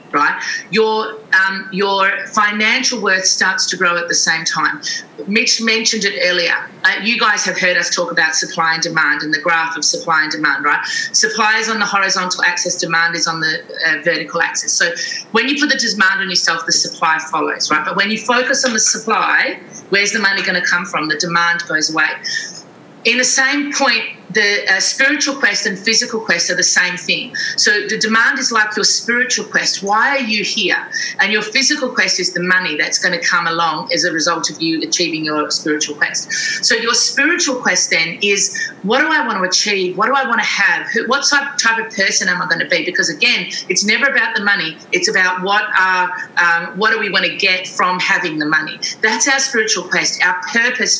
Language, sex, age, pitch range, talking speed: English, female, 30-49, 175-235 Hz, 210 wpm